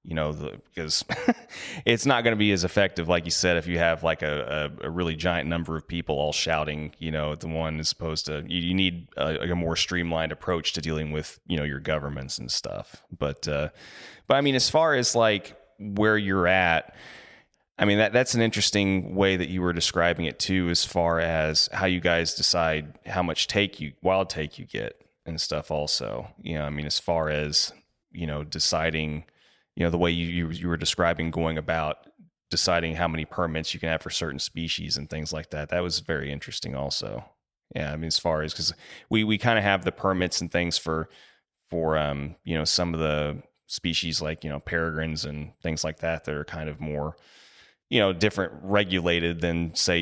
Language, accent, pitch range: English, American, 75-90 Hz